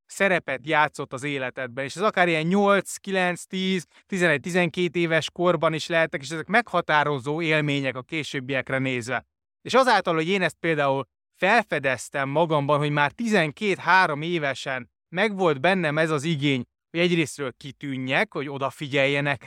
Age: 20-39